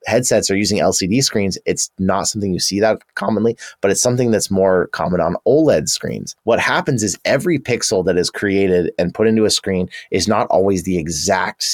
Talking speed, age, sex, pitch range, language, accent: 200 wpm, 30-49, male, 95-120 Hz, English, American